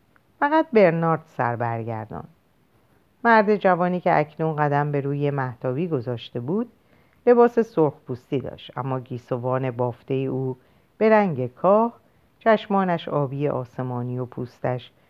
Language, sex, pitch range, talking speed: Persian, female, 130-210 Hz, 115 wpm